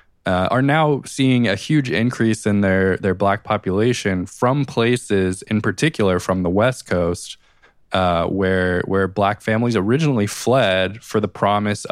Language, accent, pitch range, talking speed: English, American, 95-110 Hz, 150 wpm